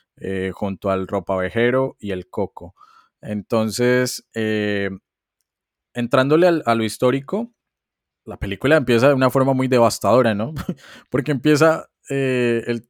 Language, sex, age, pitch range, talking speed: Spanish, male, 20-39, 105-125 Hz, 125 wpm